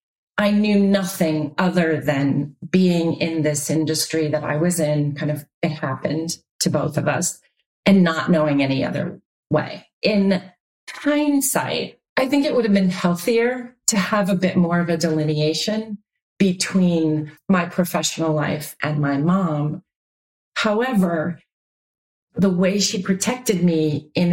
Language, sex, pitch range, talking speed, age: English, female, 155-200 Hz, 145 wpm, 40-59